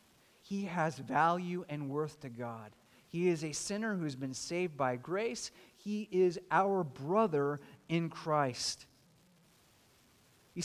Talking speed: 135 wpm